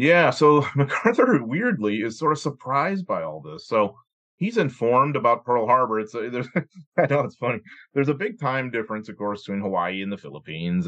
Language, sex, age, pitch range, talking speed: English, male, 30-49, 95-125 Hz, 200 wpm